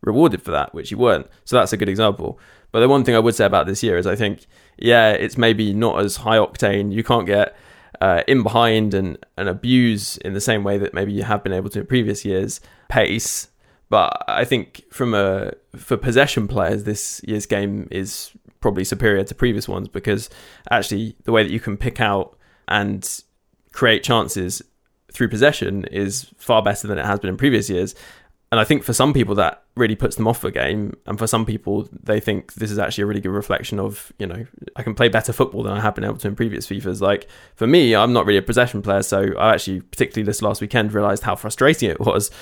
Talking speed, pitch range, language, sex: 225 wpm, 100-115 Hz, English, male